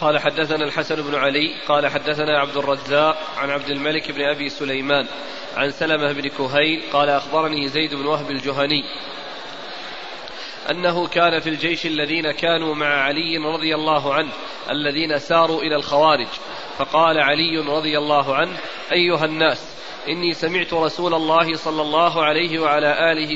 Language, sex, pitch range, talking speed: Arabic, male, 150-175 Hz, 145 wpm